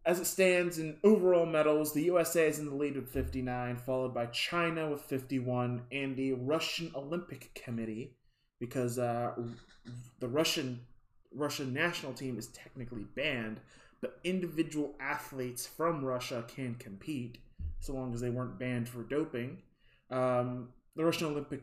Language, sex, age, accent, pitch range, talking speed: English, male, 20-39, American, 120-145 Hz, 145 wpm